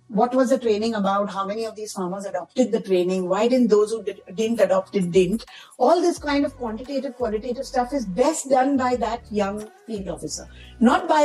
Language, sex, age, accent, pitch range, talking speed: English, female, 50-69, Indian, 195-260 Hz, 210 wpm